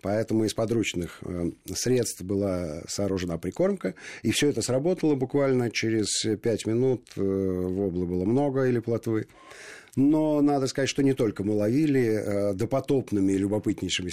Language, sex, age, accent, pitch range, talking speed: Russian, male, 50-69, native, 95-120 Hz, 130 wpm